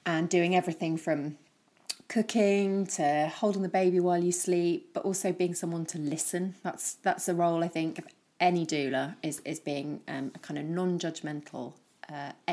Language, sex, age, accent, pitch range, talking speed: English, female, 30-49, British, 160-190 Hz, 175 wpm